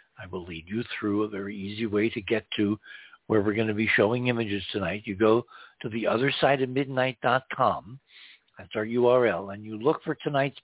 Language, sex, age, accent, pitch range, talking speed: English, male, 60-79, American, 105-135 Hz, 205 wpm